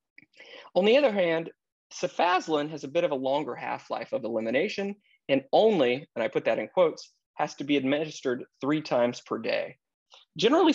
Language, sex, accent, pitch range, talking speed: English, male, American, 130-175 Hz, 175 wpm